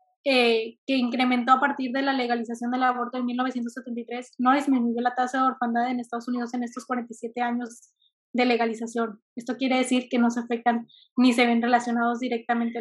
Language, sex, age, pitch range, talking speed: Spanish, female, 20-39, 240-270 Hz, 185 wpm